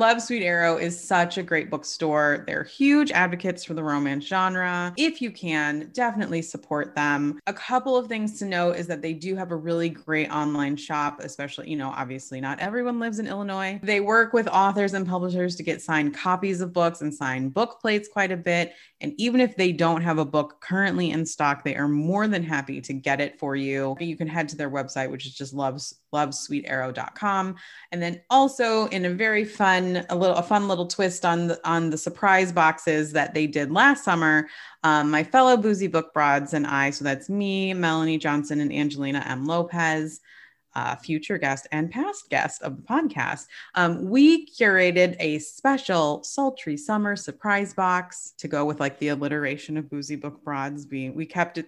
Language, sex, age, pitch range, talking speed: English, female, 30-49, 150-190 Hz, 200 wpm